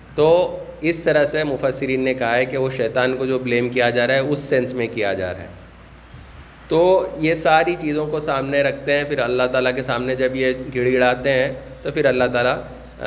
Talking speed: 210 wpm